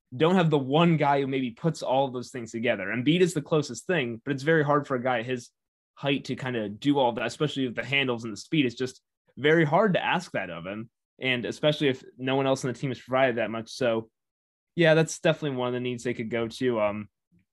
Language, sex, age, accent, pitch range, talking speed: English, male, 20-39, American, 115-140 Hz, 265 wpm